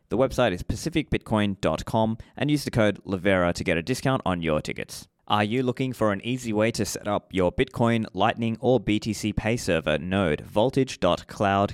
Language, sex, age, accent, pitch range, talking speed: English, male, 20-39, Australian, 95-120 Hz, 180 wpm